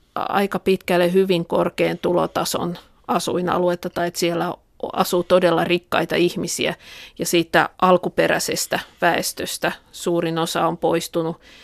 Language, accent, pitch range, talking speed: Finnish, native, 170-195 Hz, 110 wpm